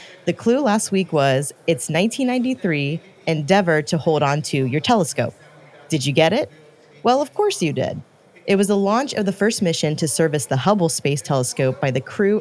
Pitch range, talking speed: 145-195 Hz, 195 wpm